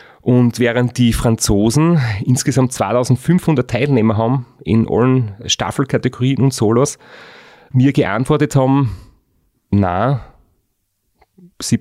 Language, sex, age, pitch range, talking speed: German, male, 30-49, 110-130 Hz, 90 wpm